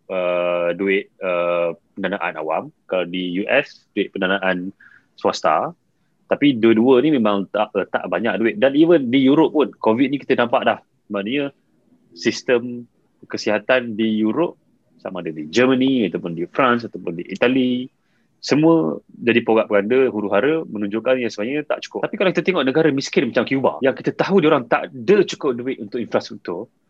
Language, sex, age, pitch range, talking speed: Malay, male, 30-49, 105-155 Hz, 165 wpm